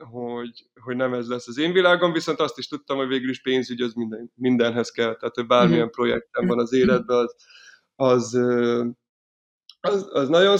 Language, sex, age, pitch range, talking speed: Hungarian, male, 20-39, 125-150 Hz, 180 wpm